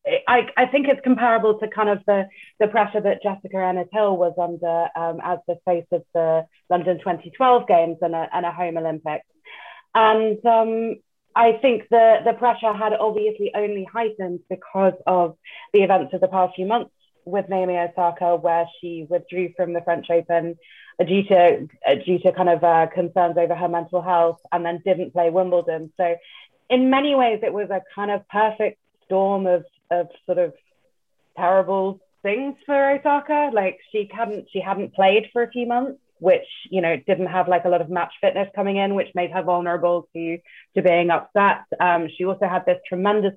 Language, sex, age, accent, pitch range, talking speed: English, female, 30-49, British, 175-215 Hz, 185 wpm